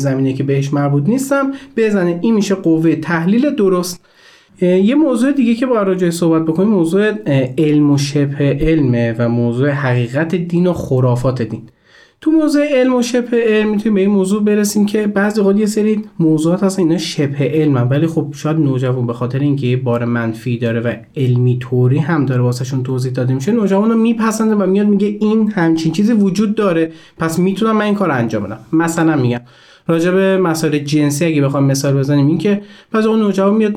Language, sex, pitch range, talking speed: Persian, male, 135-195 Hz, 185 wpm